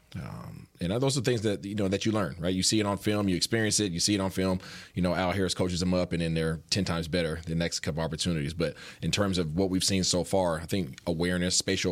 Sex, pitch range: male, 85-110 Hz